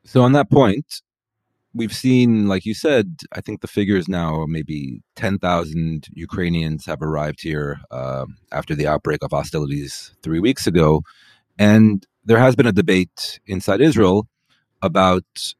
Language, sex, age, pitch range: English, male, 30-49, 80-105 Hz